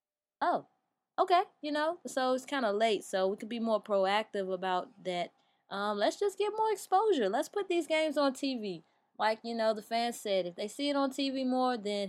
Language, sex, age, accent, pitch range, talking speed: English, female, 20-39, American, 195-260 Hz, 215 wpm